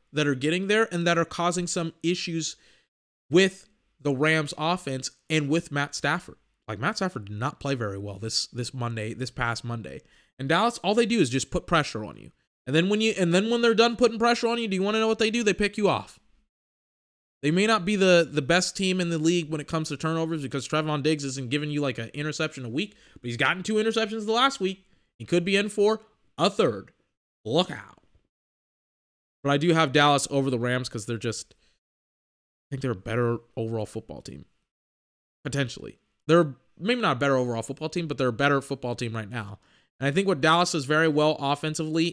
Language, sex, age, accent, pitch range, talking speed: English, male, 20-39, American, 135-180 Hz, 225 wpm